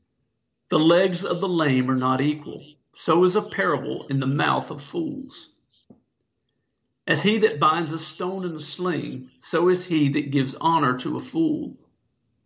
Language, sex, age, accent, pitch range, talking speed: English, male, 50-69, American, 130-170 Hz, 170 wpm